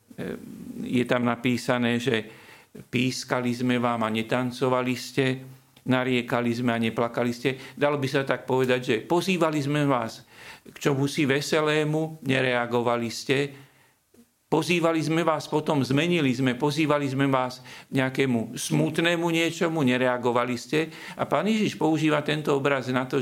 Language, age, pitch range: Slovak, 50-69, 120-140 Hz